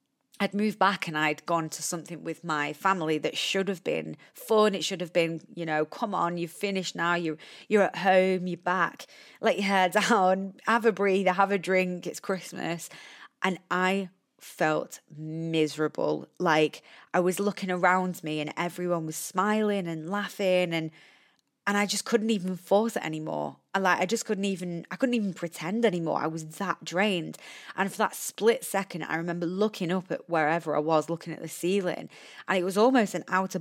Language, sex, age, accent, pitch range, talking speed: English, female, 20-39, British, 165-205 Hz, 190 wpm